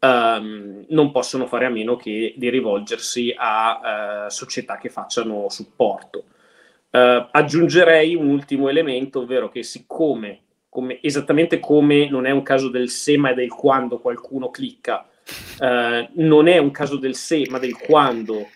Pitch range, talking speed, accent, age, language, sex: 125-150 Hz, 135 wpm, native, 30-49, Italian, male